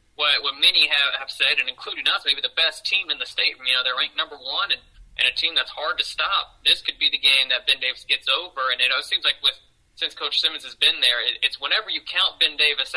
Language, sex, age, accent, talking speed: English, male, 20-39, American, 280 wpm